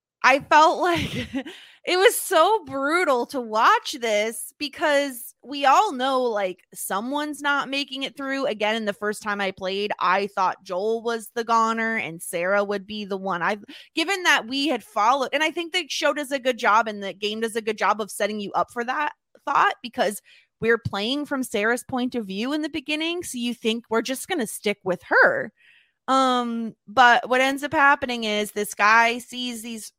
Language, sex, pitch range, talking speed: English, female, 200-275 Hz, 200 wpm